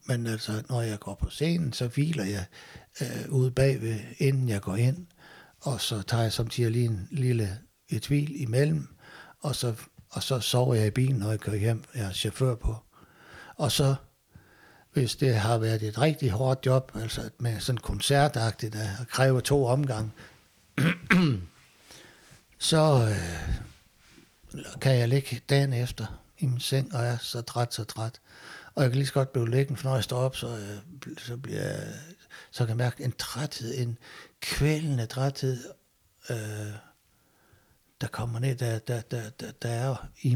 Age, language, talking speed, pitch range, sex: 60-79, Danish, 170 wpm, 110-135 Hz, male